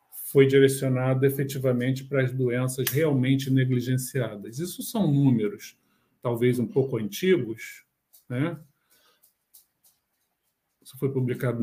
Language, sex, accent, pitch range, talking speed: Portuguese, male, Brazilian, 125-145 Hz, 100 wpm